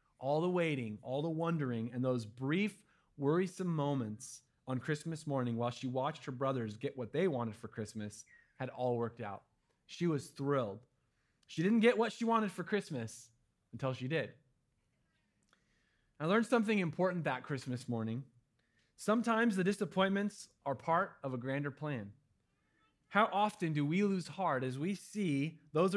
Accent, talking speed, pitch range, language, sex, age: American, 160 wpm, 125-180 Hz, English, male, 30-49